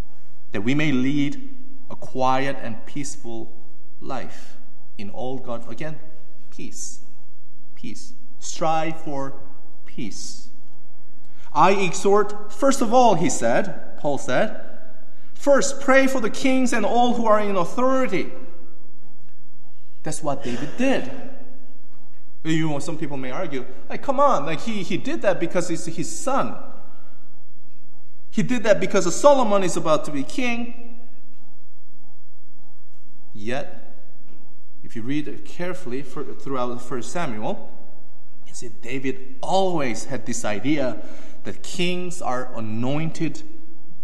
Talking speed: 120 wpm